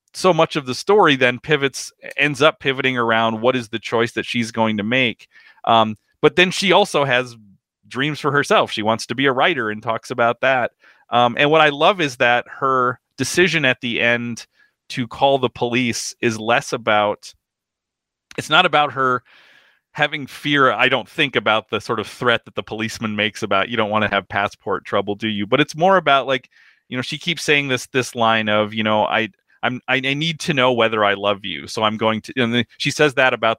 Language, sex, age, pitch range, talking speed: English, male, 30-49, 110-140 Hz, 215 wpm